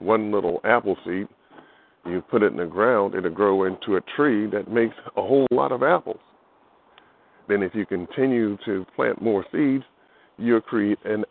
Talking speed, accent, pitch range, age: 175 wpm, American, 100-120 Hz, 50-69